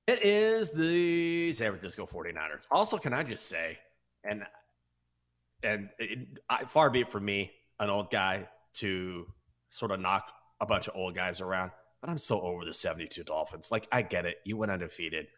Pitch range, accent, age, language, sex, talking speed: 95-135 Hz, American, 30-49, English, male, 185 wpm